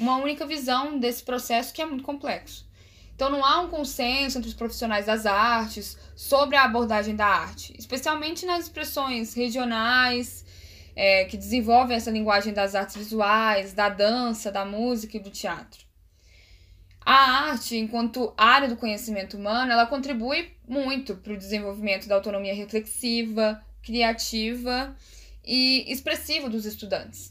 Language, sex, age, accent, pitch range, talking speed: Portuguese, female, 10-29, Brazilian, 205-260 Hz, 140 wpm